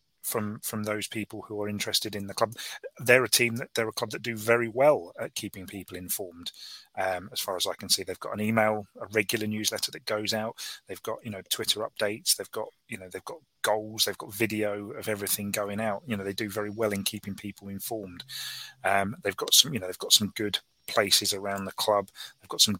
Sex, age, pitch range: male, 30-49, 100-110 Hz